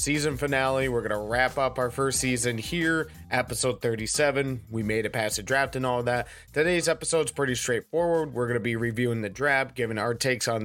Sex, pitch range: male, 120-150 Hz